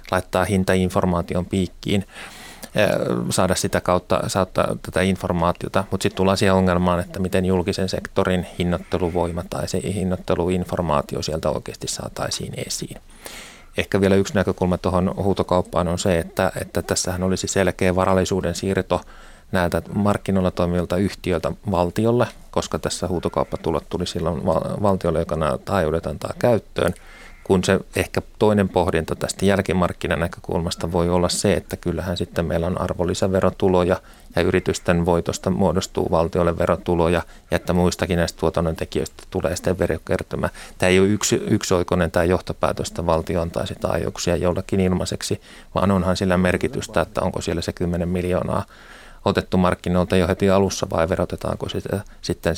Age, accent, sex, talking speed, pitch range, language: 30-49, native, male, 135 wpm, 85-95 Hz, Finnish